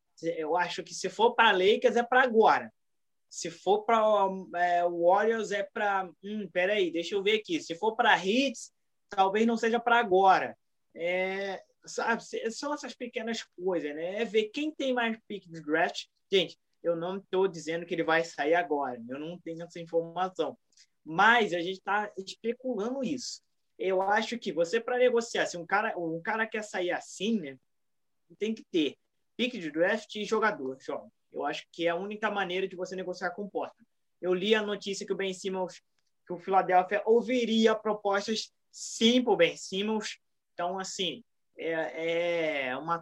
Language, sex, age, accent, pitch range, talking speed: Portuguese, male, 20-39, Brazilian, 175-225 Hz, 180 wpm